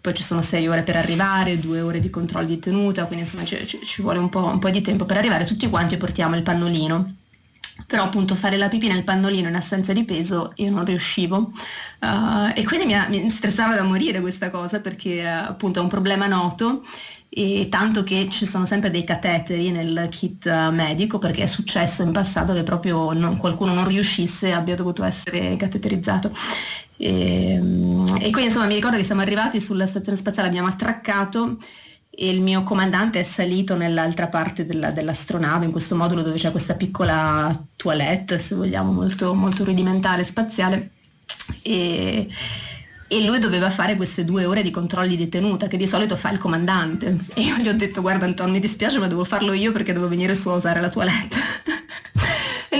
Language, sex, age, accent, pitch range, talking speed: Italian, female, 30-49, native, 175-205 Hz, 190 wpm